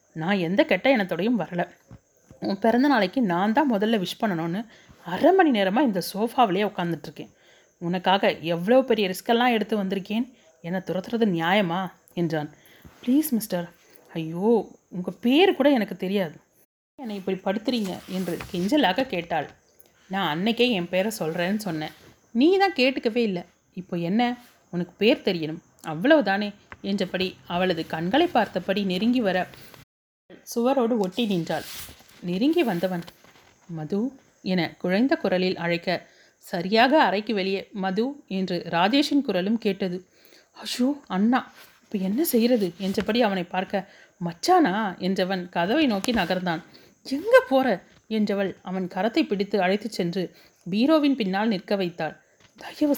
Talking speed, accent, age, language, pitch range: 120 wpm, native, 30-49, Tamil, 180-235 Hz